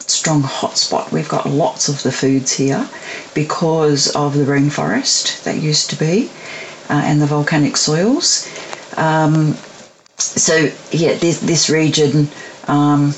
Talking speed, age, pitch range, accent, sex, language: 135 wpm, 40-59, 145-200 Hz, Australian, female, English